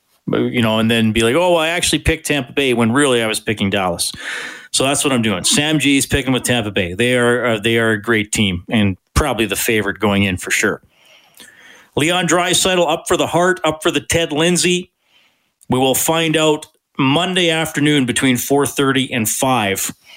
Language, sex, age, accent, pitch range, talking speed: English, male, 40-59, American, 115-160 Hz, 200 wpm